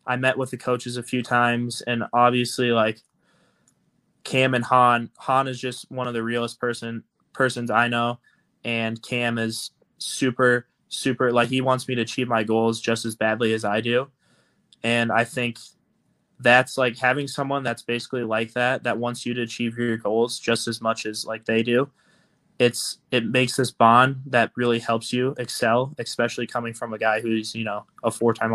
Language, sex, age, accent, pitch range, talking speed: English, male, 20-39, American, 115-125 Hz, 185 wpm